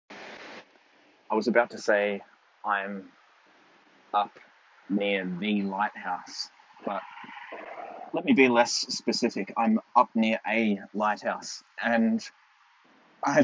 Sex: male